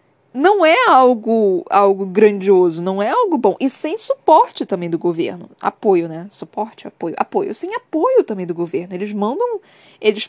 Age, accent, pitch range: 20-39, Brazilian, 190-260 Hz